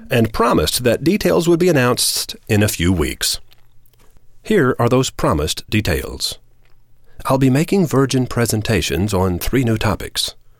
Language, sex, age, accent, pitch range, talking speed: English, male, 40-59, American, 95-130 Hz, 140 wpm